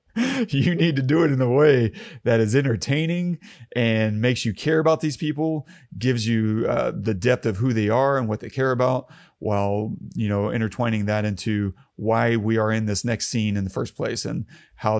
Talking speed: 205 wpm